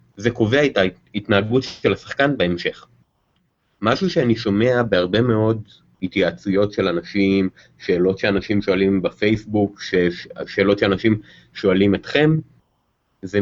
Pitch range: 100-130 Hz